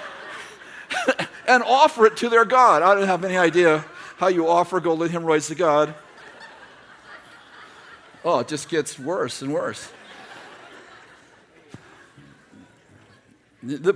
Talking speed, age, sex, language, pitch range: 120 wpm, 50-69, male, English, 160-215 Hz